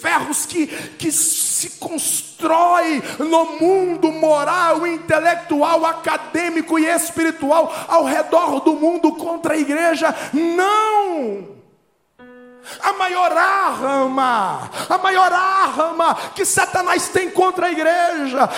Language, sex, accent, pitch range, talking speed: Portuguese, male, Brazilian, 310-380 Hz, 105 wpm